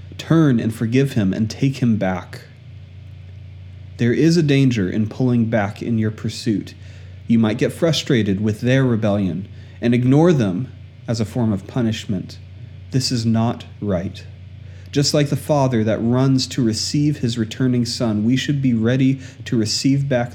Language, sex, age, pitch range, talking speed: English, male, 30-49, 100-120 Hz, 160 wpm